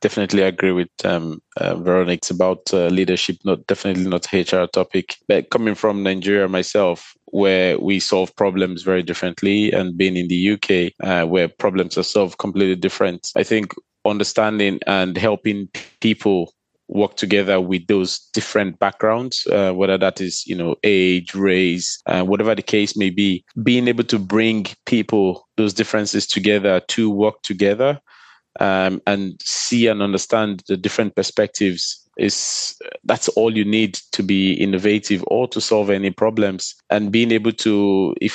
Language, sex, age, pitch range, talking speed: French, male, 20-39, 95-105 Hz, 160 wpm